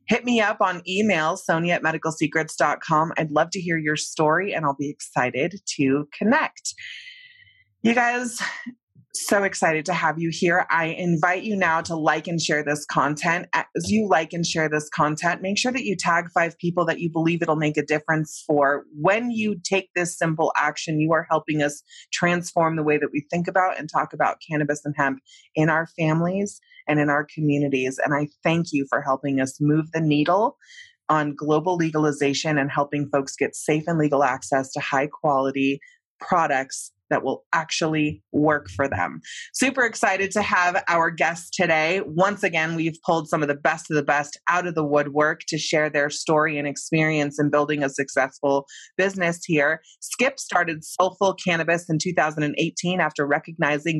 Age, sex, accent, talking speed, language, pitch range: 20-39, female, American, 180 wpm, English, 150-180 Hz